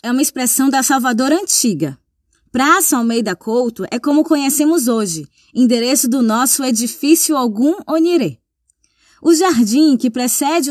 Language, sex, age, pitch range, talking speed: Portuguese, female, 20-39, 235-310 Hz, 130 wpm